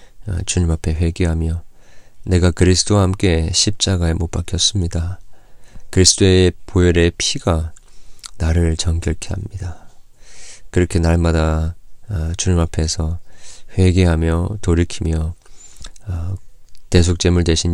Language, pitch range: Korean, 85-95 Hz